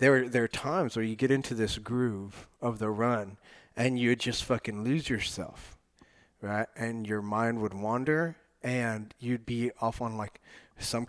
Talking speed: 185 wpm